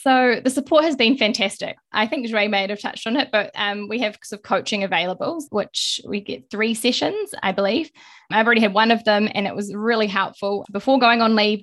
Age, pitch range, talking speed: 10-29, 195-225 Hz, 225 wpm